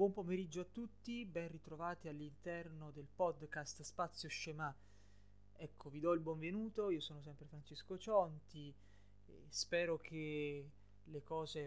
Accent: native